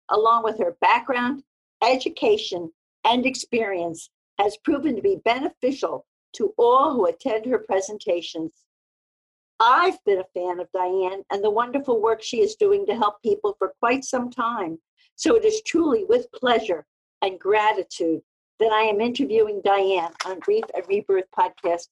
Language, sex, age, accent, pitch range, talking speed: English, female, 50-69, American, 205-320 Hz, 155 wpm